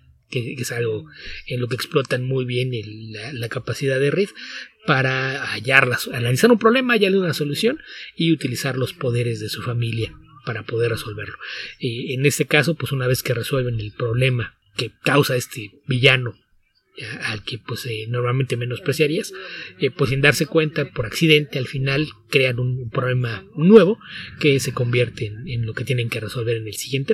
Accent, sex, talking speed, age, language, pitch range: Mexican, male, 170 wpm, 30-49, English, 120-150 Hz